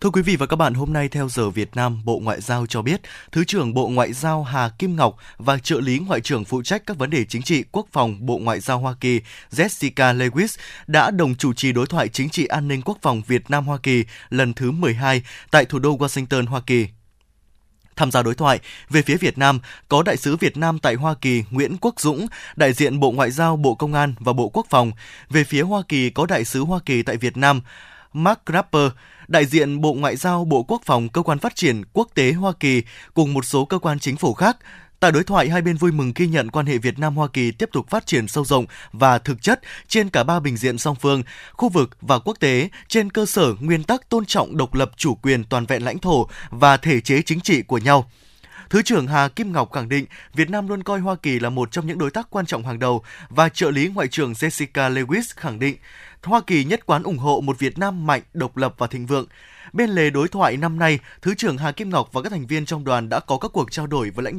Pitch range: 125-170 Hz